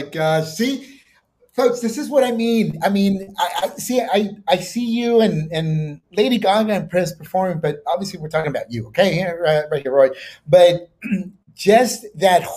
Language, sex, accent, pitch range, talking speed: English, male, American, 170-235 Hz, 175 wpm